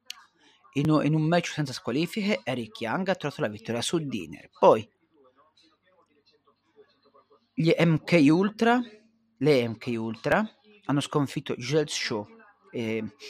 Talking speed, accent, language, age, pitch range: 115 wpm, native, Italian, 40-59, 125-185 Hz